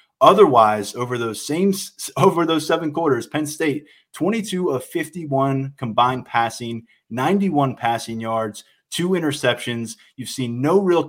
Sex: male